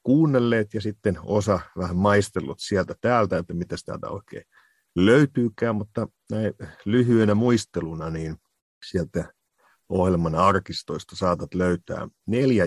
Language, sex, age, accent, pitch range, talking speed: Finnish, male, 50-69, native, 90-110 Hz, 110 wpm